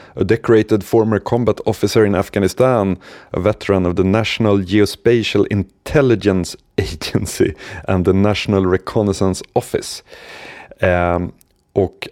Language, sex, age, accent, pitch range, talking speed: Swedish, male, 30-49, native, 95-115 Hz, 105 wpm